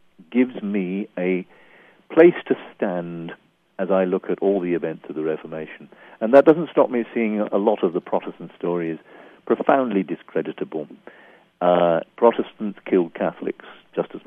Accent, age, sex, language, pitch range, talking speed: British, 50-69, male, English, 90-125 Hz, 150 wpm